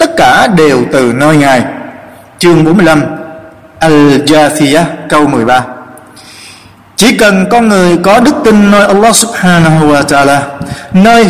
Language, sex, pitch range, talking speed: Vietnamese, male, 155-215 Hz, 125 wpm